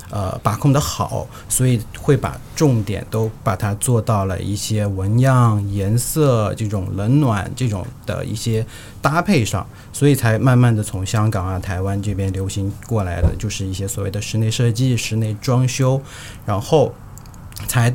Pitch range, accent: 100-120 Hz, native